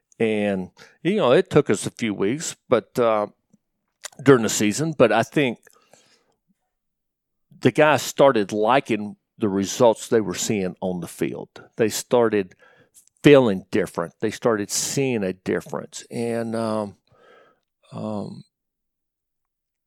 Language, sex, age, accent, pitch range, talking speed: English, male, 50-69, American, 105-140 Hz, 125 wpm